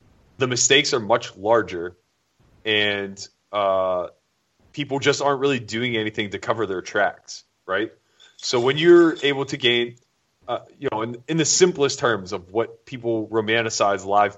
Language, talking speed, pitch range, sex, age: English, 155 wpm, 95-125 Hz, male, 30-49